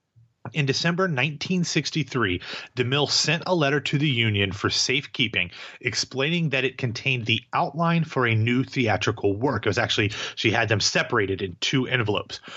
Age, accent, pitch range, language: 30-49, American, 115-150 Hz, English